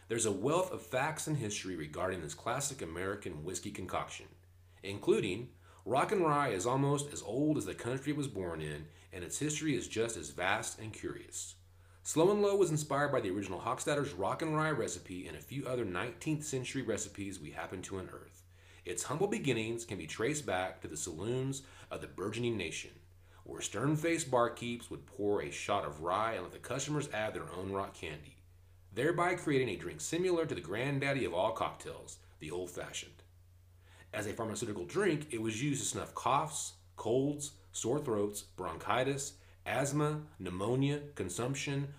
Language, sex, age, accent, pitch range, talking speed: English, male, 30-49, American, 90-140 Hz, 175 wpm